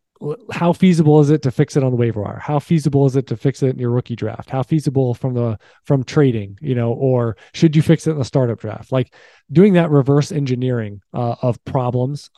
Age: 20-39